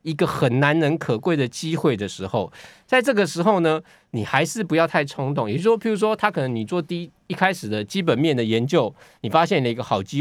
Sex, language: male, Chinese